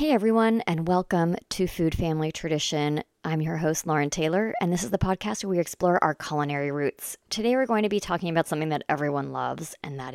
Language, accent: English, American